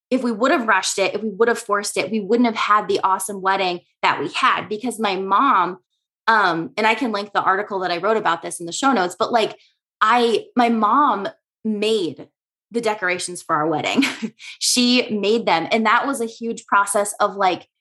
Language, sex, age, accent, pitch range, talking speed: English, female, 20-39, American, 185-235 Hz, 210 wpm